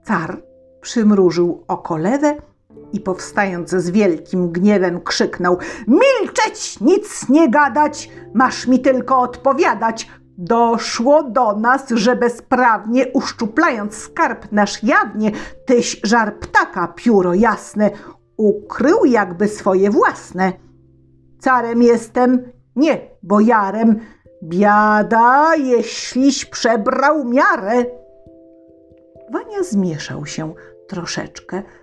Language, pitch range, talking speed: Polish, 195-265 Hz, 90 wpm